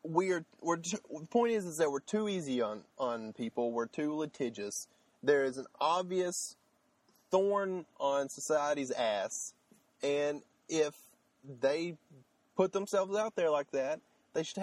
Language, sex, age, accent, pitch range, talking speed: English, male, 30-49, American, 115-170 Hz, 145 wpm